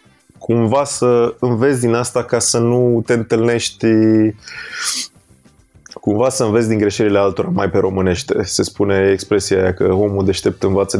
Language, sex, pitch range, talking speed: Romanian, male, 100-115 Hz, 145 wpm